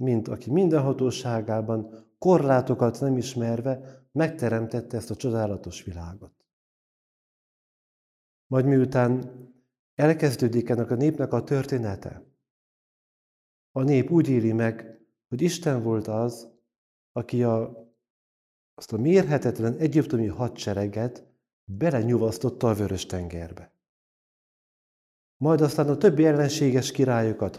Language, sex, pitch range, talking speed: Hungarian, male, 105-135 Hz, 100 wpm